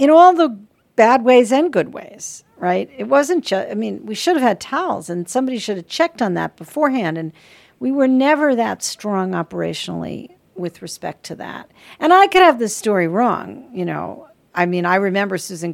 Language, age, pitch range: English, 50-69, 175-235 Hz